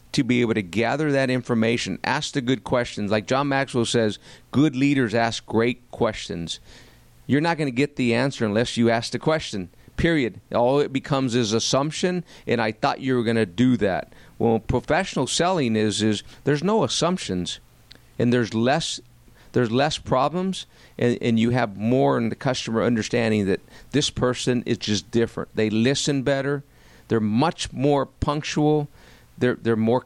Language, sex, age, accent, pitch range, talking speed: English, male, 50-69, American, 110-145 Hz, 170 wpm